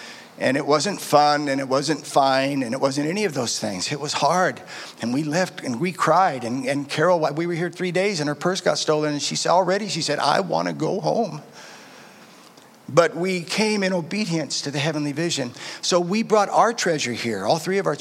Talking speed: 225 wpm